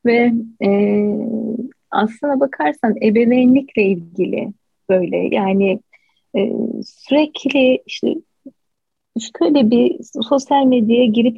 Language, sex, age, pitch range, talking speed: Turkish, female, 30-49, 230-290 Hz, 85 wpm